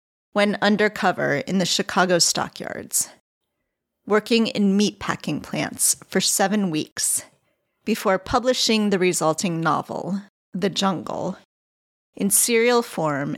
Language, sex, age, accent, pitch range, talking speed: English, female, 30-49, American, 180-210 Hz, 105 wpm